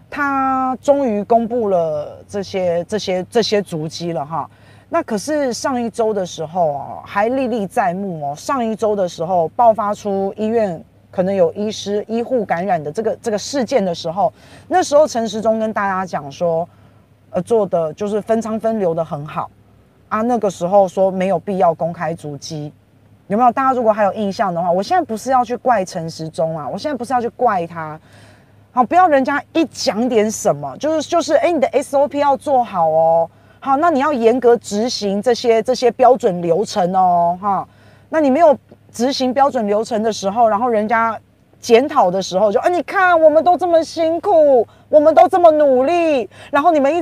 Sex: female